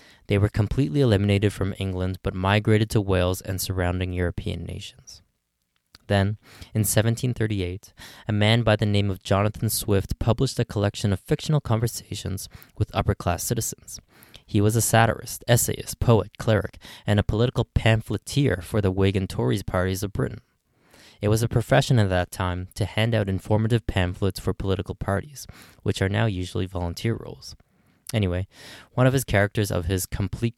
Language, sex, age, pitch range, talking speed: English, male, 20-39, 95-110 Hz, 160 wpm